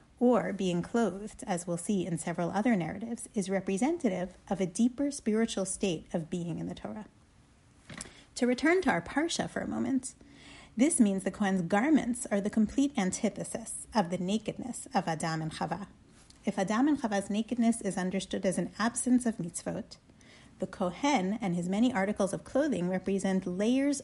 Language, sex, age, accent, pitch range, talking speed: English, female, 30-49, American, 180-230 Hz, 170 wpm